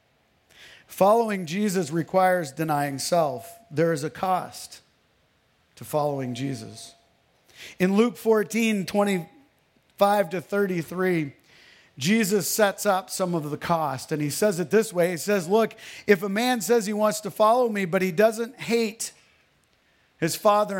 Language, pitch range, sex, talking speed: English, 170-230 Hz, male, 140 wpm